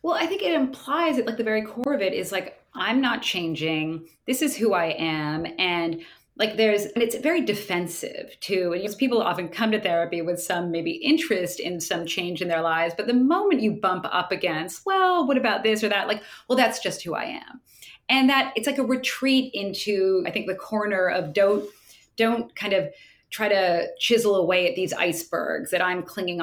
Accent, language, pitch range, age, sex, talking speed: American, English, 170-230 Hz, 30-49, female, 205 wpm